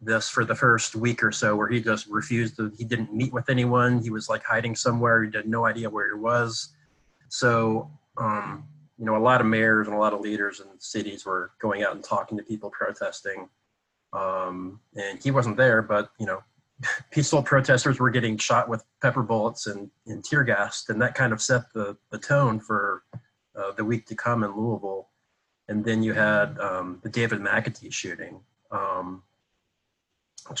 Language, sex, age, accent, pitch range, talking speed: English, male, 30-49, American, 105-120 Hz, 195 wpm